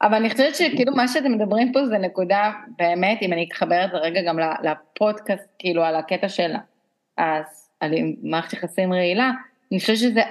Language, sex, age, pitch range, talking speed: Hebrew, female, 30-49, 180-225 Hz, 170 wpm